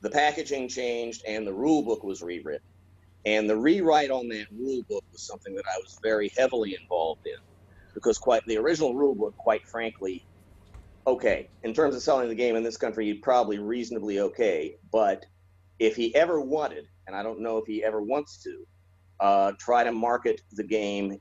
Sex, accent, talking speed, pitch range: male, American, 190 wpm, 95-120 Hz